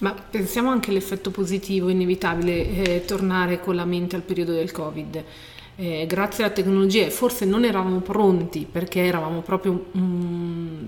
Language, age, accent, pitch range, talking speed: Italian, 40-59, native, 170-195 Hz, 150 wpm